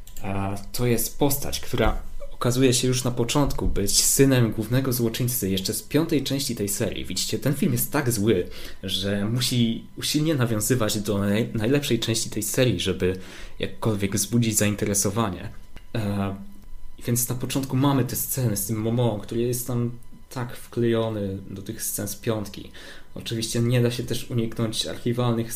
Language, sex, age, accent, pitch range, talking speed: Polish, male, 20-39, native, 100-120 Hz, 155 wpm